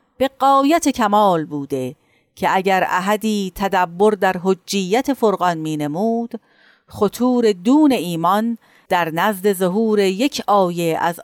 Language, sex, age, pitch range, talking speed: Persian, female, 50-69, 175-235 Hz, 110 wpm